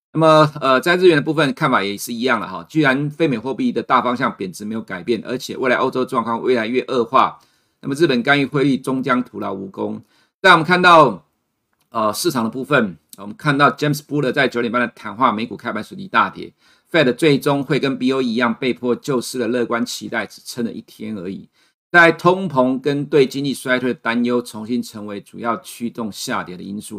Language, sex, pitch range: Chinese, male, 115-145 Hz